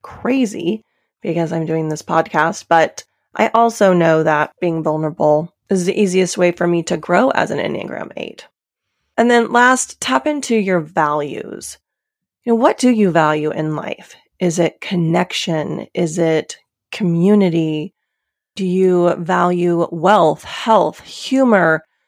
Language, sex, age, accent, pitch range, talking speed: English, female, 30-49, American, 165-210 Hz, 140 wpm